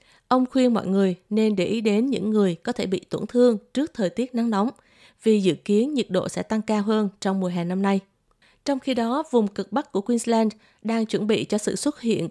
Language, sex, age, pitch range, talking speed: Vietnamese, female, 20-39, 190-235 Hz, 240 wpm